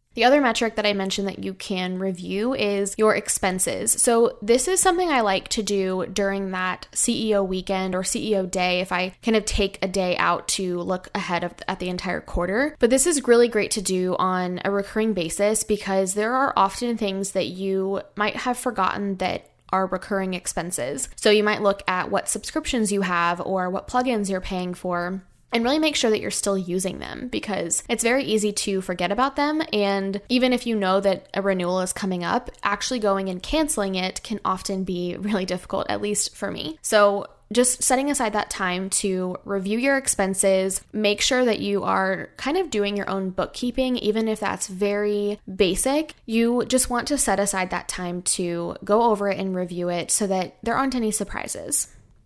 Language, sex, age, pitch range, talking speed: English, female, 20-39, 185-230 Hz, 200 wpm